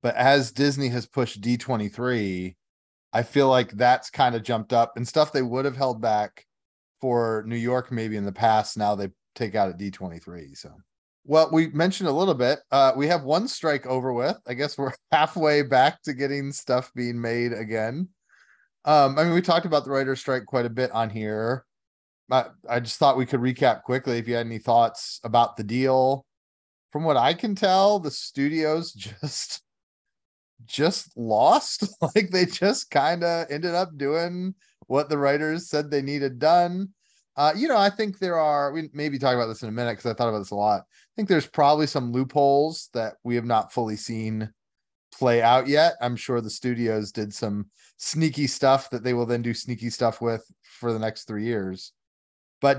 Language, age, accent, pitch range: English, 30-49, American, 115-150 Hz